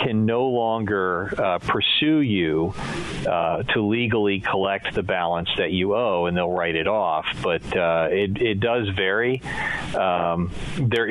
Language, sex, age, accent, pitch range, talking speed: English, male, 40-59, American, 95-115 Hz, 150 wpm